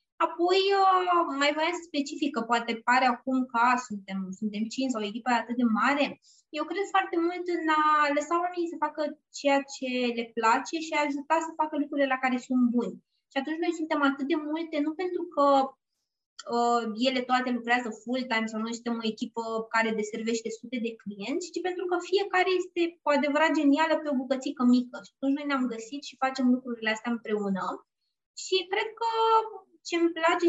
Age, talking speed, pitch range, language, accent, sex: 20-39, 190 wpm, 235-345 Hz, Romanian, native, female